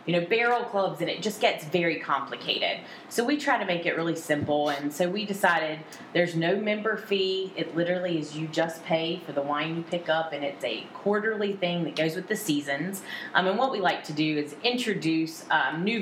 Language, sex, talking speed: English, female, 220 wpm